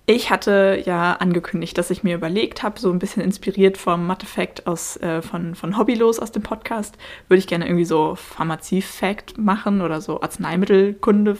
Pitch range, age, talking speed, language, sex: 175-210 Hz, 20-39, 175 wpm, German, female